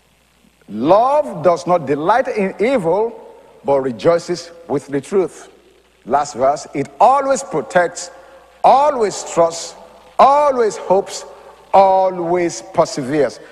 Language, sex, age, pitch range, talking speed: English, male, 50-69, 175-295 Hz, 100 wpm